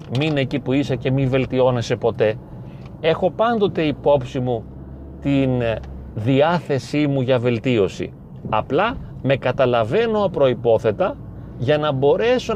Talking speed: 115 wpm